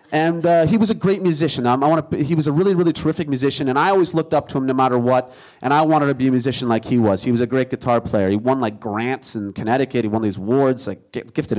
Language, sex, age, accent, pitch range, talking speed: English, male, 30-49, American, 115-145 Hz, 280 wpm